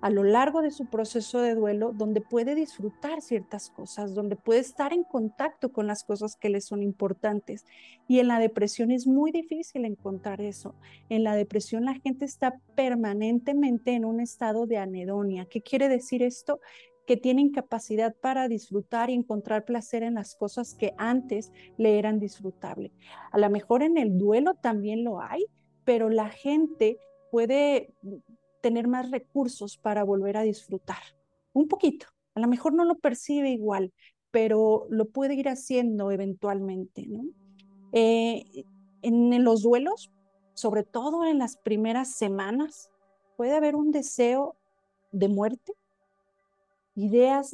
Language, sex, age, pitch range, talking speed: Spanish, female, 40-59, 205-260 Hz, 150 wpm